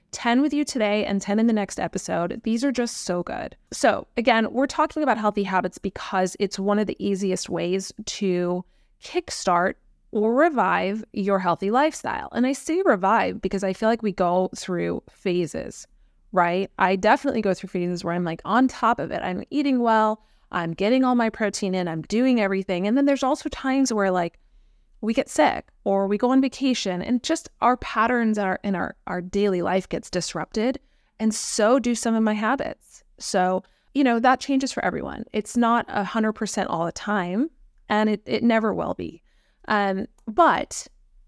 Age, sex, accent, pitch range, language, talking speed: 20-39, female, American, 190-250 Hz, English, 185 wpm